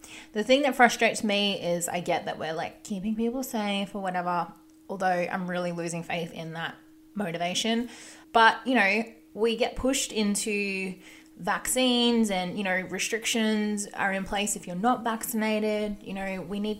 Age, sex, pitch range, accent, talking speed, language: 20-39, female, 185-255 Hz, Australian, 170 wpm, English